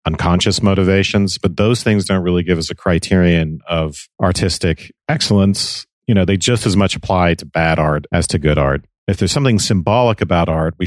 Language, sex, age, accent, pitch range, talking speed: English, male, 40-59, American, 80-100 Hz, 195 wpm